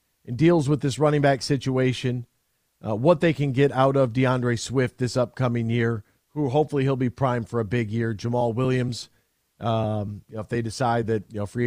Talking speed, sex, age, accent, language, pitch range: 205 wpm, male, 40-59, American, English, 115-150 Hz